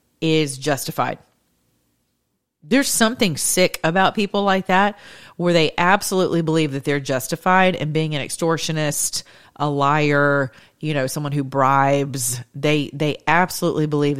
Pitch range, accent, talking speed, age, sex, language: 135-170 Hz, American, 130 wpm, 40-59, female, English